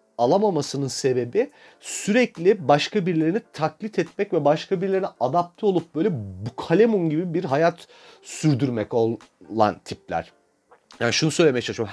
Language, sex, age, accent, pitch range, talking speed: Turkish, male, 40-59, native, 130-175 Hz, 120 wpm